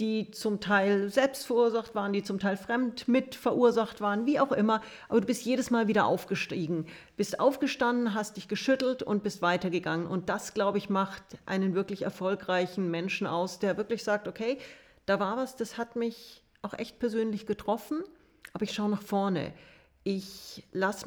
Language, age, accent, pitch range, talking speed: German, 40-59, German, 200-235 Hz, 175 wpm